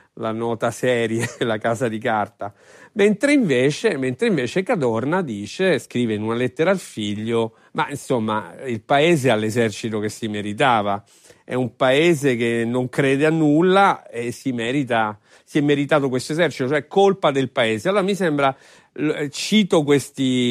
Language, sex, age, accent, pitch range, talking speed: Italian, male, 40-59, native, 115-155 Hz, 155 wpm